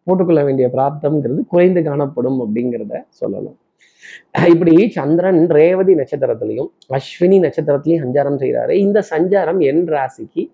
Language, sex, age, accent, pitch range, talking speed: Tamil, male, 20-39, native, 150-185 Hz, 110 wpm